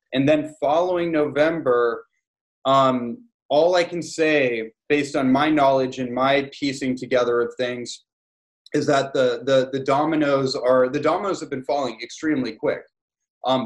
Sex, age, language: male, 20-39, English